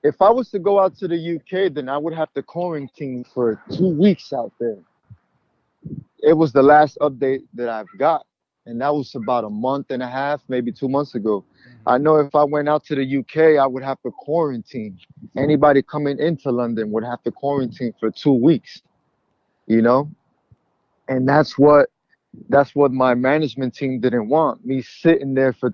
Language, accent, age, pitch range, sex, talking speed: English, American, 30-49, 125-150 Hz, male, 190 wpm